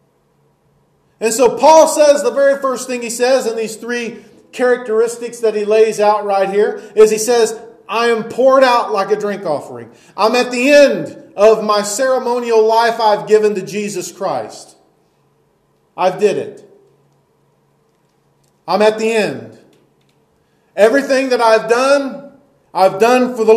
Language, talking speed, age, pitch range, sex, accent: English, 150 wpm, 40-59, 195-250 Hz, male, American